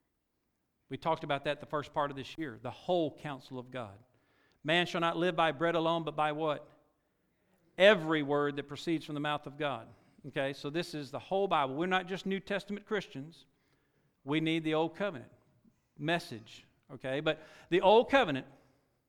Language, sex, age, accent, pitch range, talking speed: English, male, 50-69, American, 140-200 Hz, 180 wpm